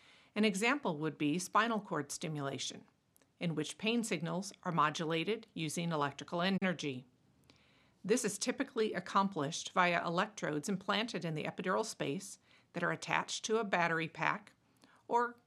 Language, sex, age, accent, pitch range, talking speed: English, female, 50-69, American, 160-205 Hz, 135 wpm